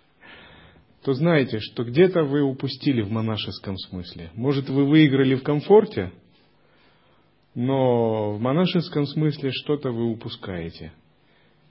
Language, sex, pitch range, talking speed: Russian, male, 105-145 Hz, 110 wpm